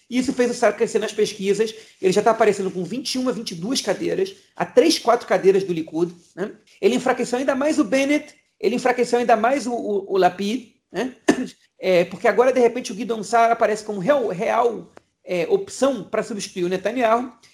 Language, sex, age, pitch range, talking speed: Portuguese, male, 40-59, 190-240 Hz, 190 wpm